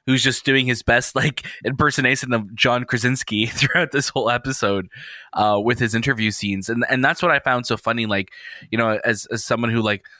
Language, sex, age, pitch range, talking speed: English, male, 20-39, 110-135 Hz, 205 wpm